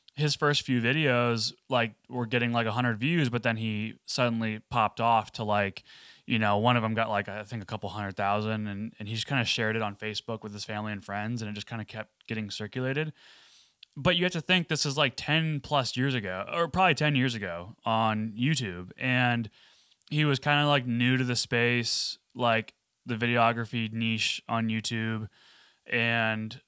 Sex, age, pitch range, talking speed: male, 20-39, 110-135 Hz, 200 wpm